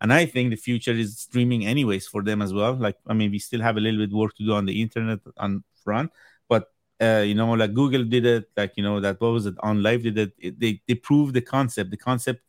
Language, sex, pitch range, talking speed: English, male, 105-125 Hz, 275 wpm